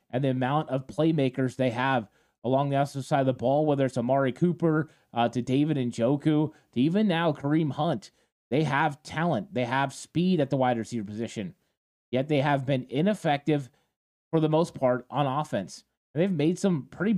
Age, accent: 30-49, American